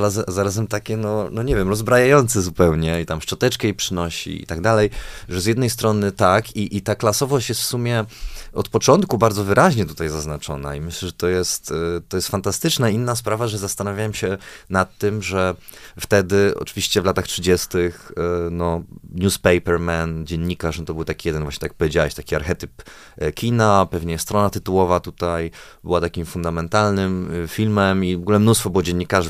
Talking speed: 170 wpm